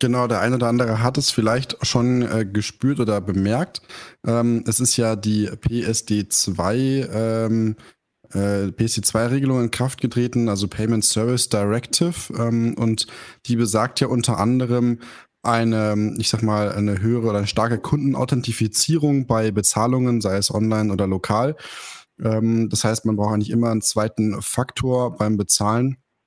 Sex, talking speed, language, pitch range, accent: male, 150 wpm, German, 105-120 Hz, German